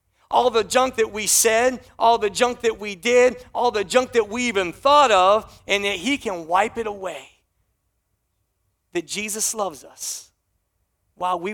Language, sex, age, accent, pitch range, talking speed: English, male, 40-59, American, 150-235 Hz, 170 wpm